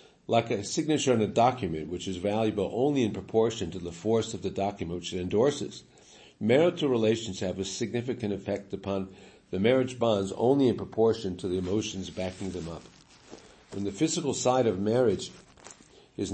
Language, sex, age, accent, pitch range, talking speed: English, male, 50-69, American, 95-115 Hz, 175 wpm